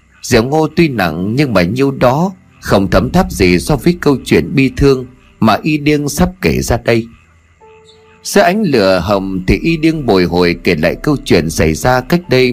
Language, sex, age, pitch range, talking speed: Vietnamese, male, 30-49, 85-145 Hz, 200 wpm